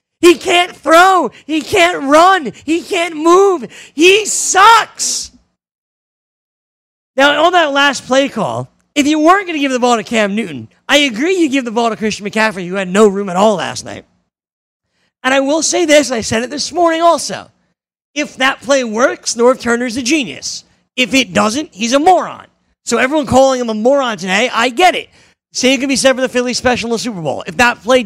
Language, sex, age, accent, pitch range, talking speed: English, male, 40-59, American, 230-325 Hz, 195 wpm